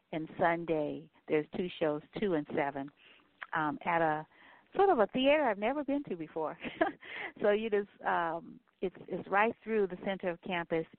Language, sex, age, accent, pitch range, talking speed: English, female, 50-69, American, 150-185 Hz, 175 wpm